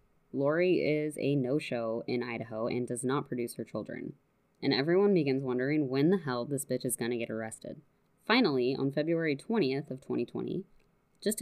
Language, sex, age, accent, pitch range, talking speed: English, female, 20-39, American, 130-170 Hz, 175 wpm